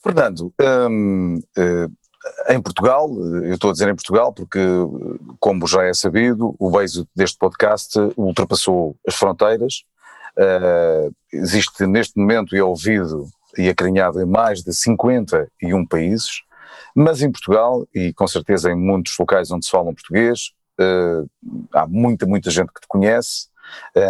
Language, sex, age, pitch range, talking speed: Portuguese, male, 40-59, 95-130 Hz, 135 wpm